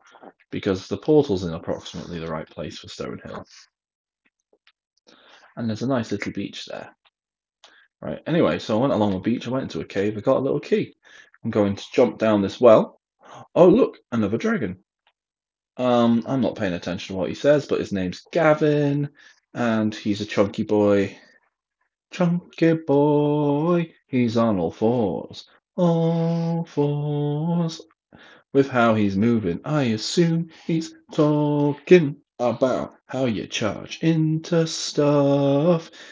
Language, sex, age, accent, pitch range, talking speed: English, male, 20-39, British, 110-160 Hz, 145 wpm